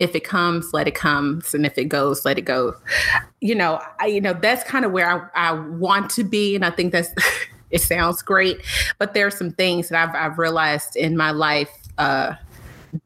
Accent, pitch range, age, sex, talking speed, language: American, 160-180 Hz, 30-49, female, 215 wpm, English